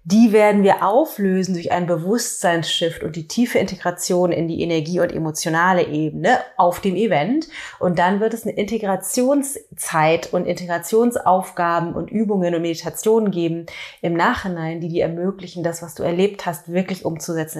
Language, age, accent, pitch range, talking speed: German, 30-49, German, 175-220 Hz, 155 wpm